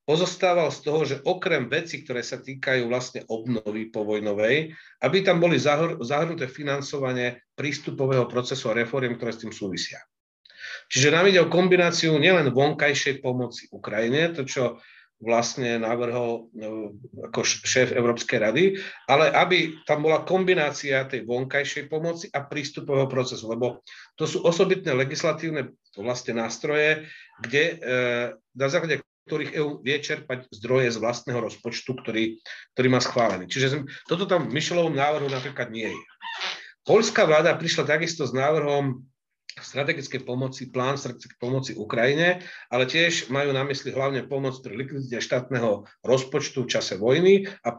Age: 40-59